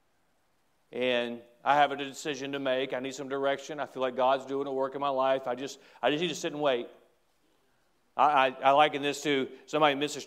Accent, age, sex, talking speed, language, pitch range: American, 40-59, male, 230 wpm, English, 145-210 Hz